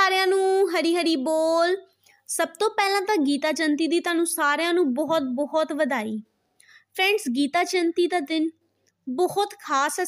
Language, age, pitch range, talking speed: Punjabi, 20-39, 275-360 Hz, 155 wpm